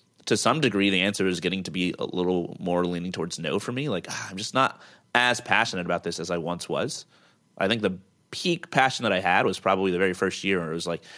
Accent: American